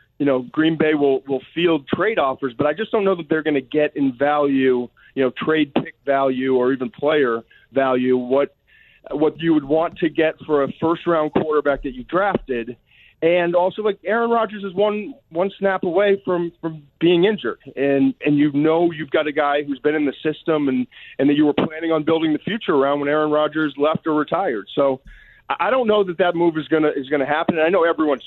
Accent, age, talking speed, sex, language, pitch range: American, 40-59, 225 wpm, male, English, 140-180 Hz